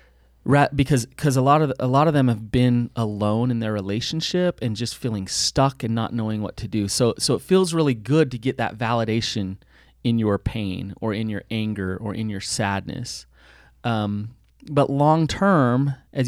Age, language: 30-49, English